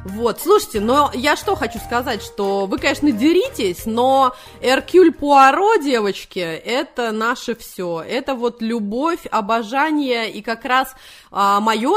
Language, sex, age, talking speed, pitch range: Russian, female, 20-39, 130 wpm, 205-250 Hz